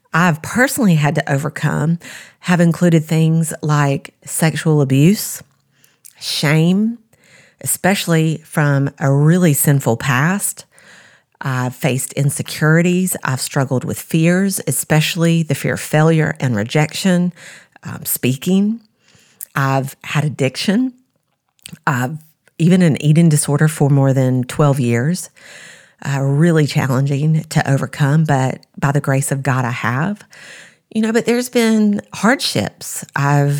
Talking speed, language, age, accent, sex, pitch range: 120 wpm, English, 40-59, American, female, 140-180 Hz